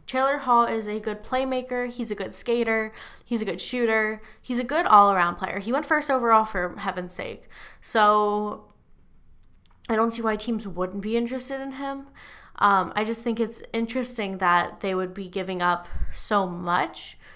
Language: English